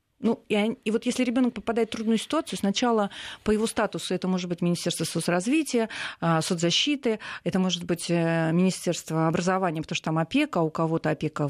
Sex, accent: female, native